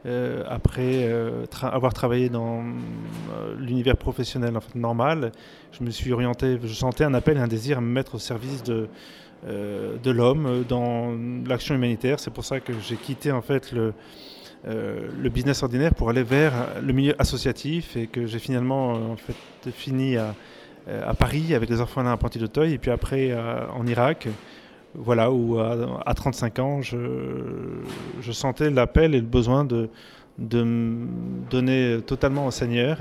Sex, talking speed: male, 175 wpm